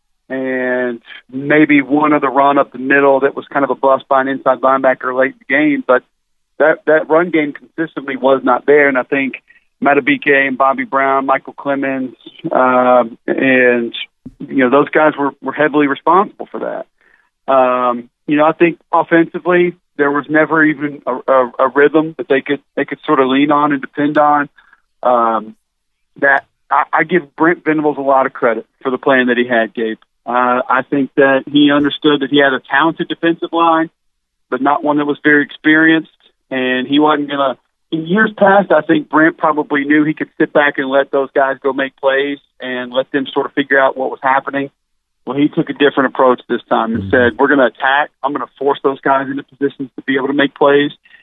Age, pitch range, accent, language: 40-59, 130-150 Hz, American, English